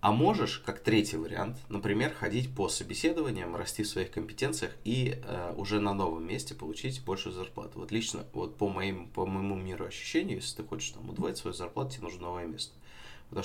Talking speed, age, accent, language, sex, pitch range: 190 wpm, 20-39, native, Russian, male, 90-110 Hz